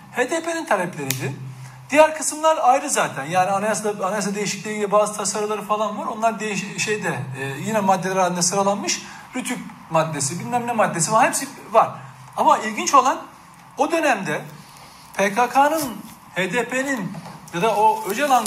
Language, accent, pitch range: Turkish, native, 175-240 Hz